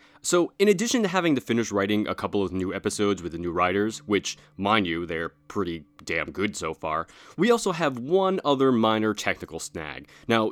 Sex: male